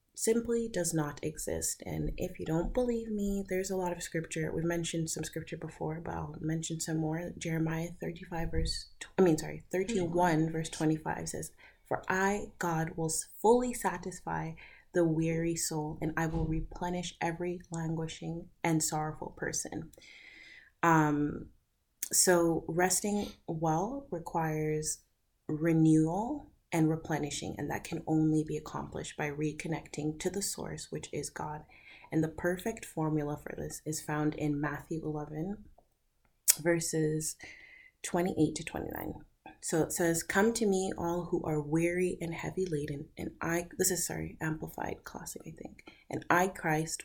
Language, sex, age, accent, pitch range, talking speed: English, female, 30-49, American, 155-180 Hz, 145 wpm